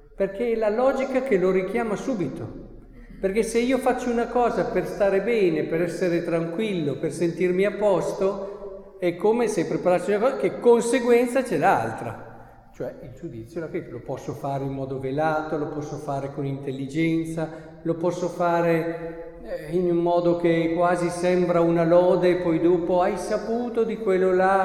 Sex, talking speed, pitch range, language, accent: male, 170 wpm, 155-215 Hz, Italian, native